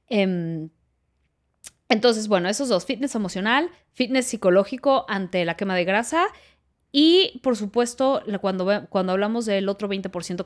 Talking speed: 125 wpm